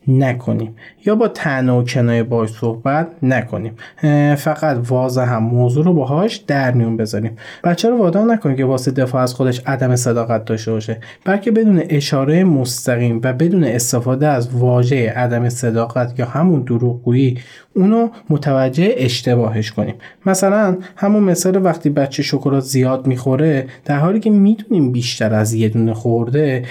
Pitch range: 120-165 Hz